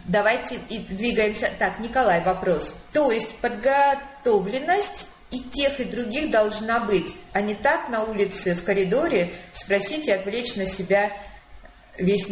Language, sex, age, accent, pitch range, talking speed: Russian, female, 30-49, native, 195-270 Hz, 130 wpm